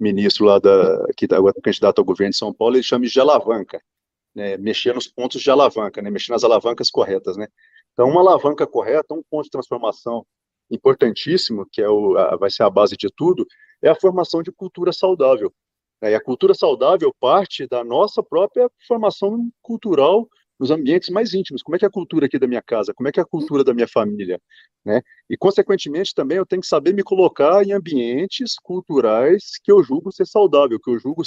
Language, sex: Portuguese, male